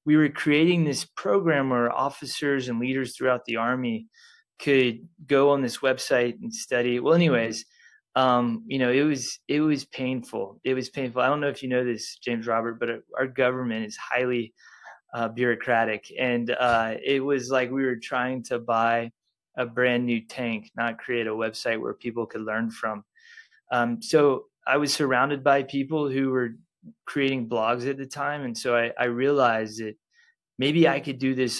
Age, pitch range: 20-39, 120-145 Hz